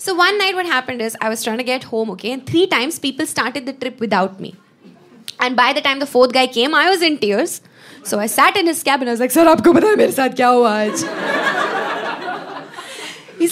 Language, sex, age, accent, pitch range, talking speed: Hindi, female, 20-39, native, 215-330 Hz, 235 wpm